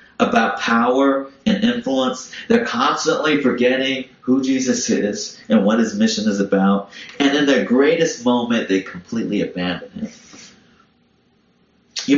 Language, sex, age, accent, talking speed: English, male, 30-49, American, 130 wpm